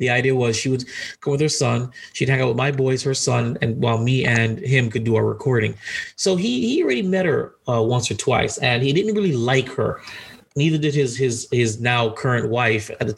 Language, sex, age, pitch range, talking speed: English, male, 30-49, 115-145 Hz, 240 wpm